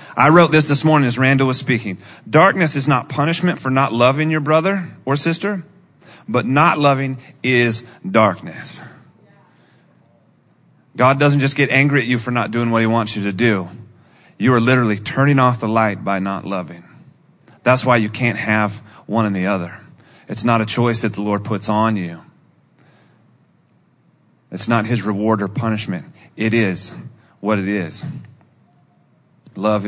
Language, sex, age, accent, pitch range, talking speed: English, male, 30-49, American, 110-155 Hz, 165 wpm